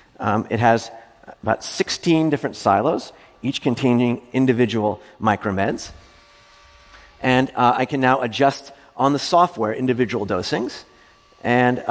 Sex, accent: male, American